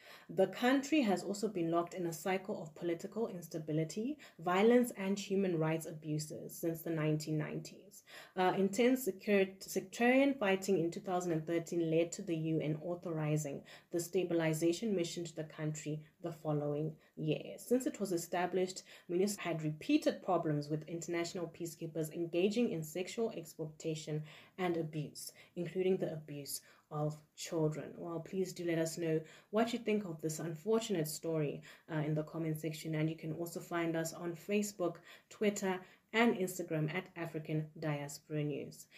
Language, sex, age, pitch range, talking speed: English, female, 20-39, 155-190 Hz, 150 wpm